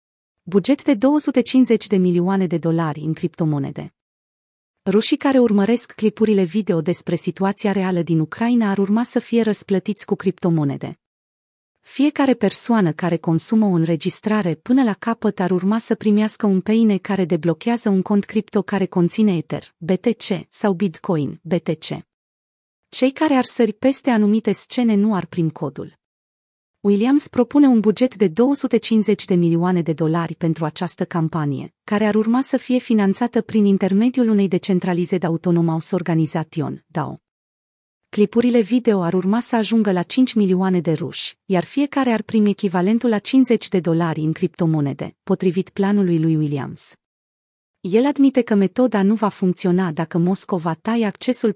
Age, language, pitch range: 30-49, Romanian, 170-225 Hz